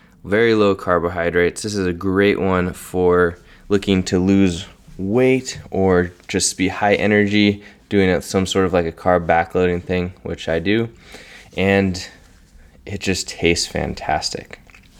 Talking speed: 145 wpm